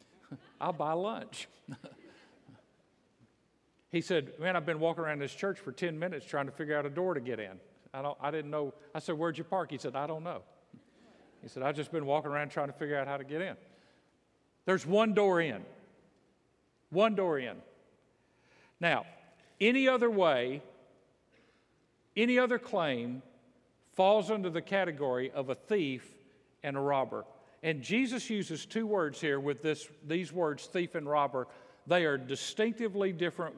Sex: male